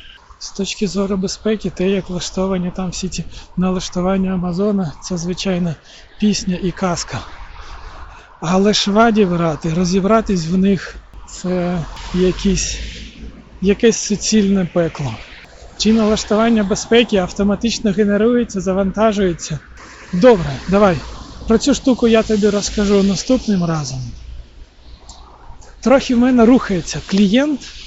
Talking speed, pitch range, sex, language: 105 wpm, 165-200 Hz, male, Ukrainian